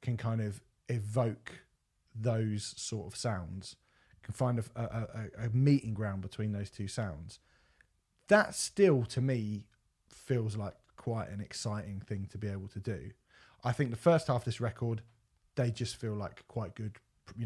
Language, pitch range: English, 105-125 Hz